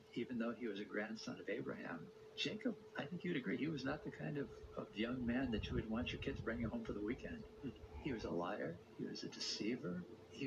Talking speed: 240 wpm